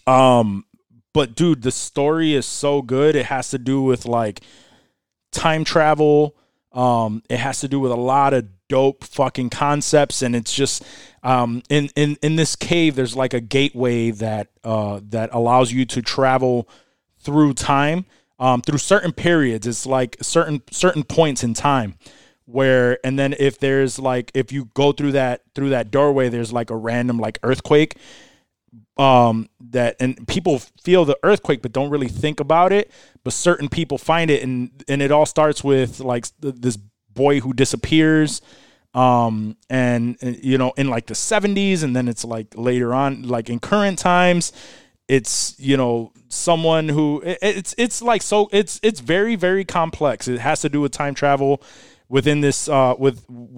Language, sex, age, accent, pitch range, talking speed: English, male, 20-39, American, 125-150 Hz, 170 wpm